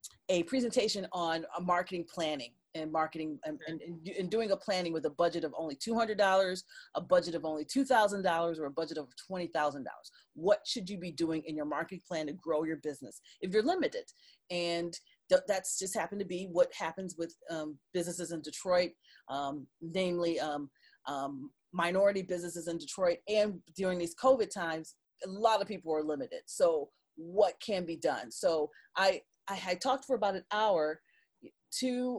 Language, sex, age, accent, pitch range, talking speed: English, female, 40-59, American, 160-220 Hz, 175 wpm